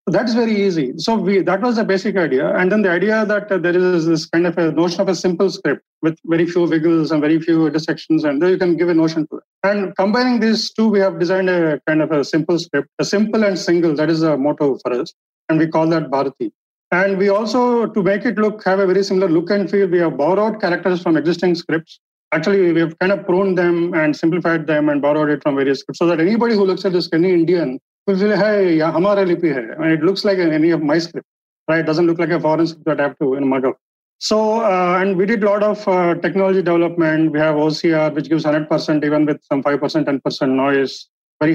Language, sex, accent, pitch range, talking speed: Hindi, male, native, 150-185 Hz, 245 wpm